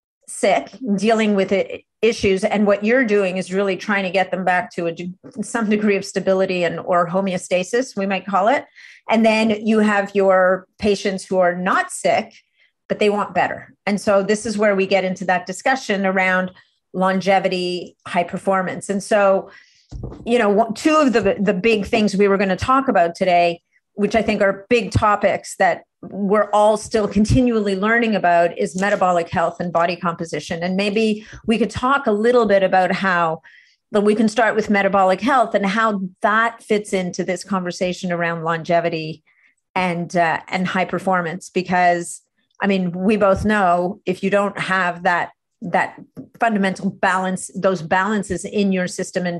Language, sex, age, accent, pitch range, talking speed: English, female, 40-59, American, 180-210 Hz, 170 wpm